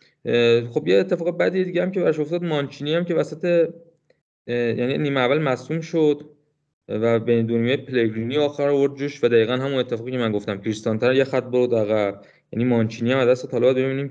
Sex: male